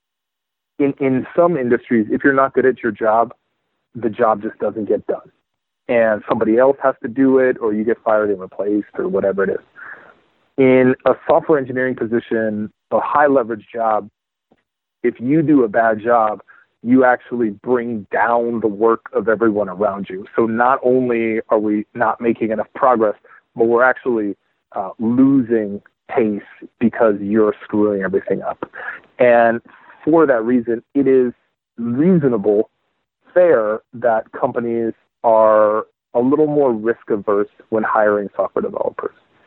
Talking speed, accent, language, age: 150 wpm, American, English, 40-59